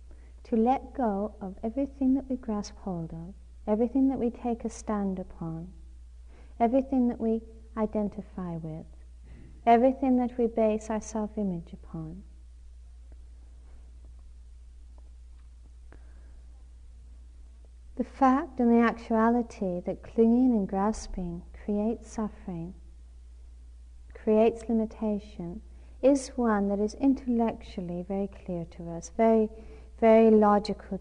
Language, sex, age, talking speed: English, female, 40-59, 105 wpm